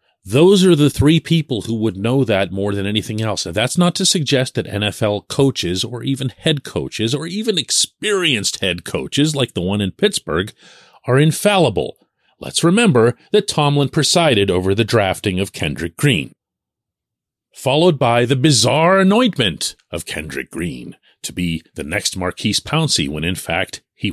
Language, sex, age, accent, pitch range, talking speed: English, male, 40-59, American, 95-145 Hz, 165 wpm